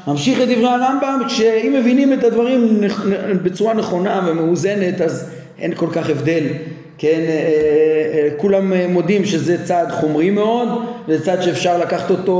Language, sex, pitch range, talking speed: Hebrew, male, 170-220 Hz, 140 wpm